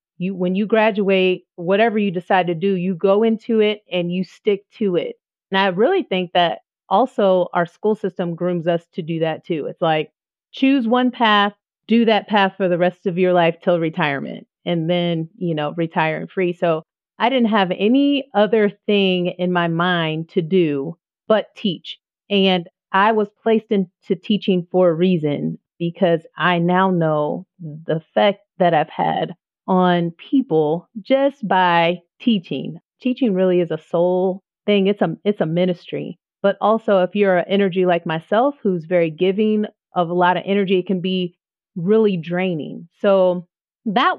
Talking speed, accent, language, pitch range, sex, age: 170 wpm, American, English, 175-210 Hz, female, 30-49